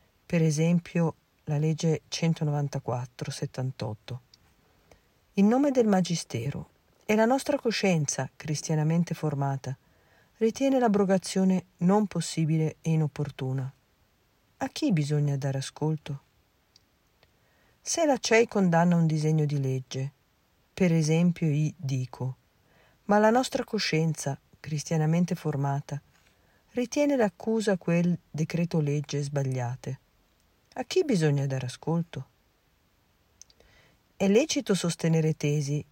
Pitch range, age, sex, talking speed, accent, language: 140-185 Hz, 50-69, female, 100 wpm, native, Italian